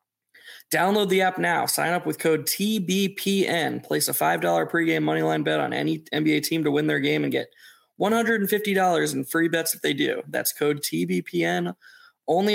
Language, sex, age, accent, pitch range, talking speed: English, male, 20-39, American, 155-190 Hz, 170 wpm